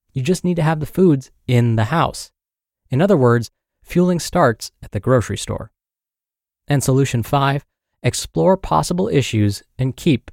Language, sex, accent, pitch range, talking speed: English, male, American, 110-155 Hz, 155 wpm